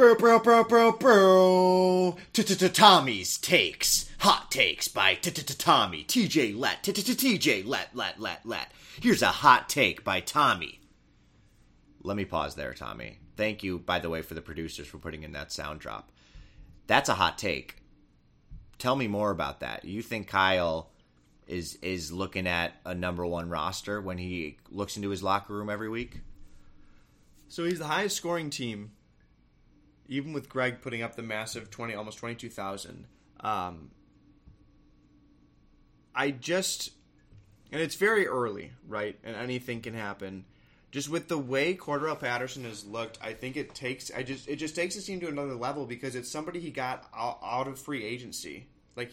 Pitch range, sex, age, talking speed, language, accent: 85-145 Hz, male, 30-49, 165 wpm, English, American